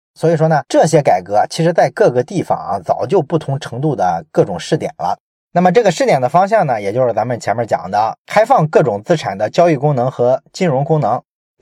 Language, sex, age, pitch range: Chinese, male, 20-39, 135-180 Hz